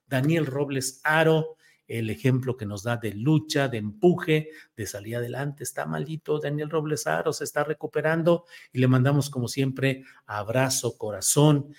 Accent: Mexican